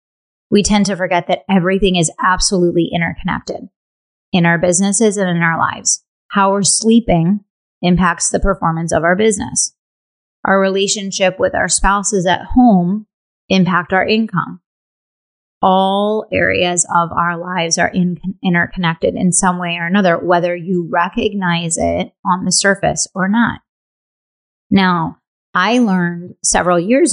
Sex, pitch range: female, 175-200 Hz